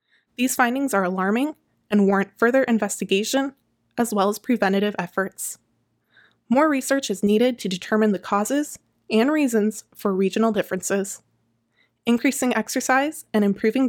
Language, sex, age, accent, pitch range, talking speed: English, female, 20-39, American, 195-260 Hz, 130 wpm